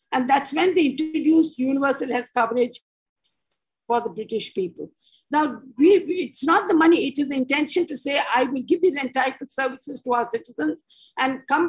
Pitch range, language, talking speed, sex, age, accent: 250-325 Hz, English, 185 wpm, female, 50-69, Indian